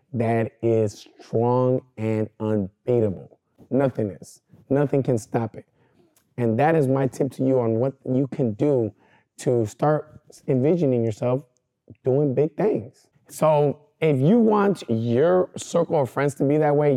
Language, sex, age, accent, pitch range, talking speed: English, male, 20-39, American, 120-150 Hz, 150 wpm